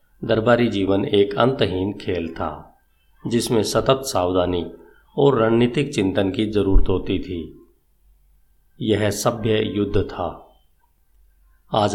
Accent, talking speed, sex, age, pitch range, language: native, 105 wpm, male, 50-69, 90-110 Hz, Hindi